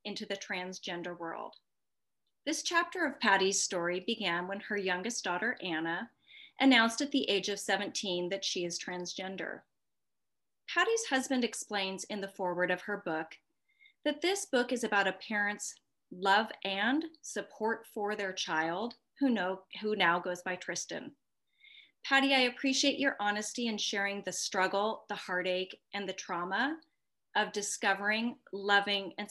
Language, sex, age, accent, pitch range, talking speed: English, female, 30-49, American, 185-225 Hz, 145 wpm